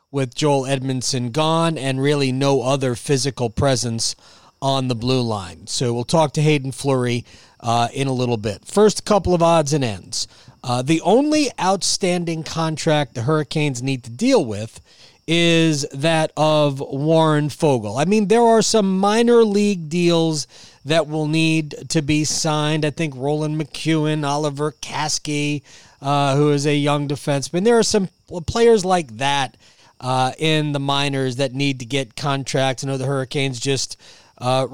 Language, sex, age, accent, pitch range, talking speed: English, male, 30-49, American, 130-160 Hz, 160 wpm